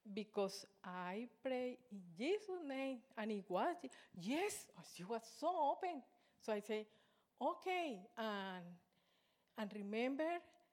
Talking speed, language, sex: 125 wpm, Danish, female